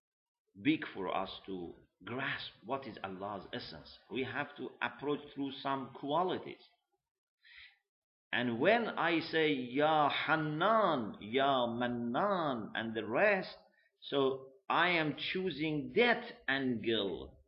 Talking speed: 115 wpm